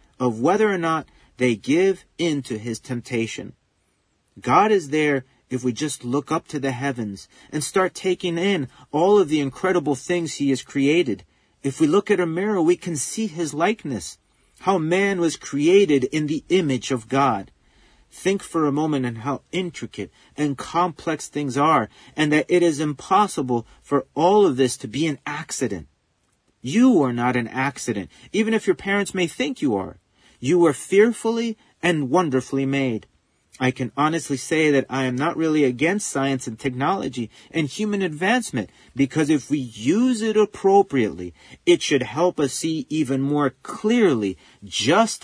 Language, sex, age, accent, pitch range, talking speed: English, male, 40-59, American, 130-180 Hz, 170 wpm